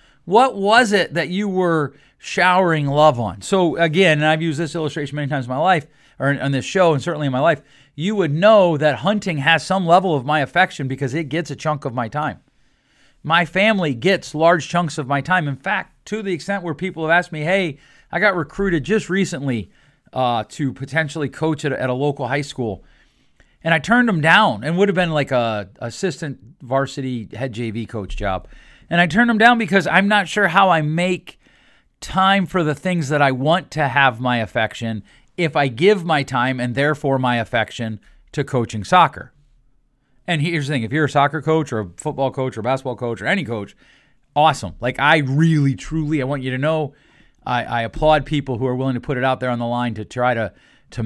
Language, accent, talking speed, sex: English, American, 215 wpm, male